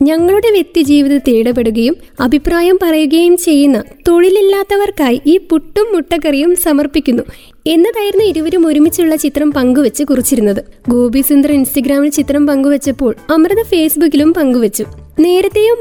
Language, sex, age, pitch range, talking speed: Malayalam, female, 20-39, 270-340 Hz, 100 wpm